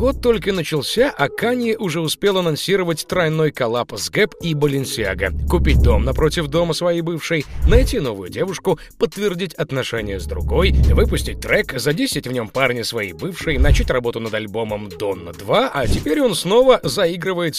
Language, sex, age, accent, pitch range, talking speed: Russian, male, 30-49, native, 110-175 Hz, 160 wpm